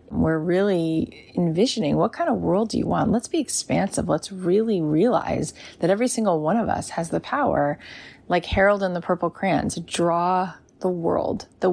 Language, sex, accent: English, female, American